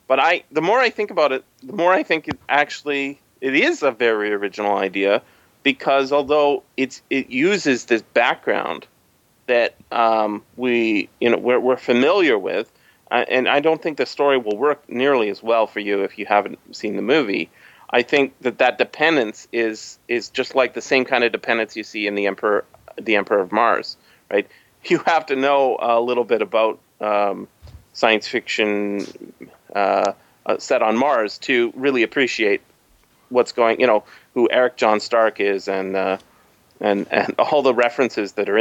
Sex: male